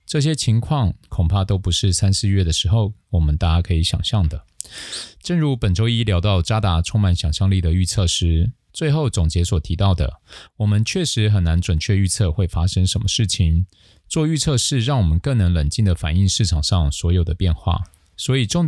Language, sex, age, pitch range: Chinese, male, 20-39, 90-110 Hz